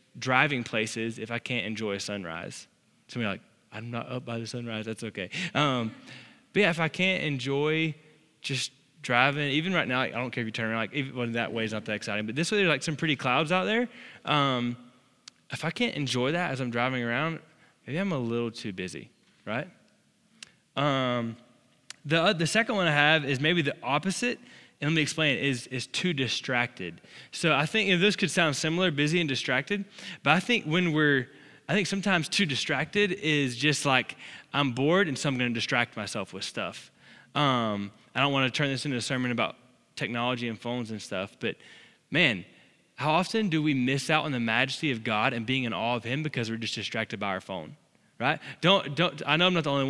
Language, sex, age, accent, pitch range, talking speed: English, male, 10-29, American, 120-160 Hz, 220 wpm